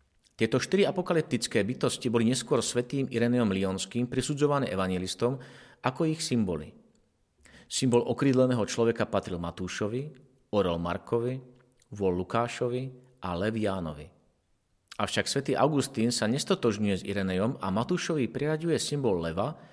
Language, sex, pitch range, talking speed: Slovak, male, 100-135 Hz, 115 wpm